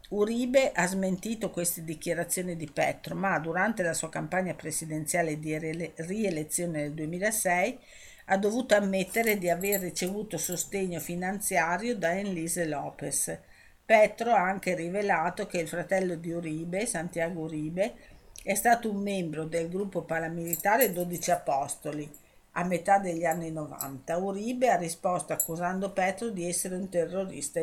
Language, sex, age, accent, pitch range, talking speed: Italian, female, 50-69, native, 155-195 Hz, 135 wpm